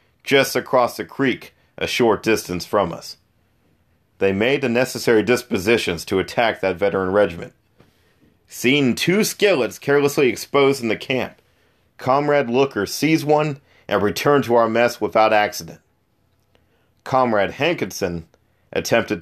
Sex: male